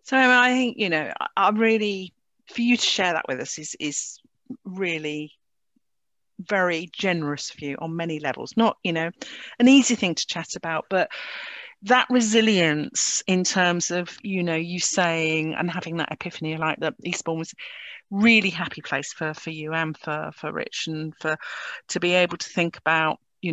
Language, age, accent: English, 40-59, British